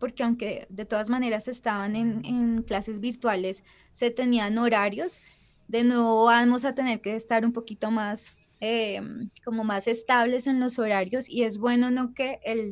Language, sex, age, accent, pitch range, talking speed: English, female, 20-39, Colombian, 200-240 Hz, 170 wpm